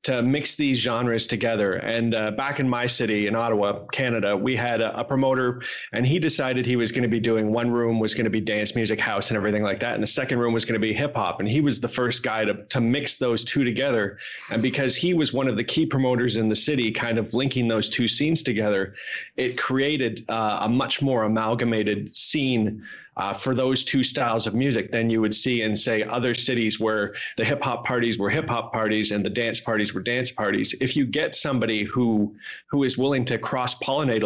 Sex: male